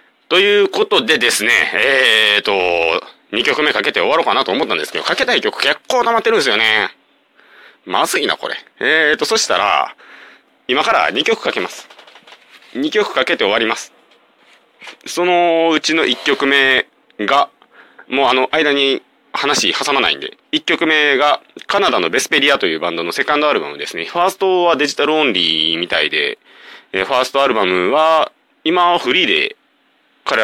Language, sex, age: Japanese, male, 30-49